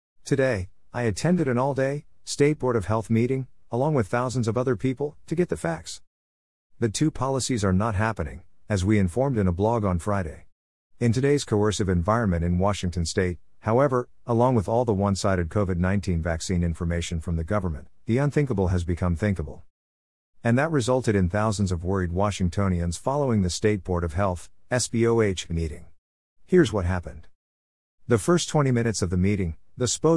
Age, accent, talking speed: 50-69, American, 170 wpm